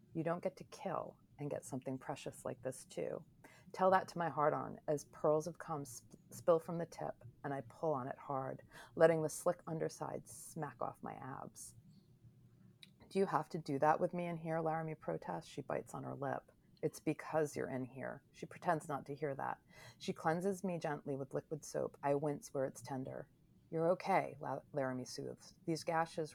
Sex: female